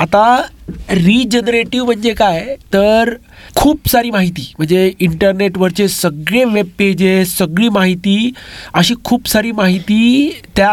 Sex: male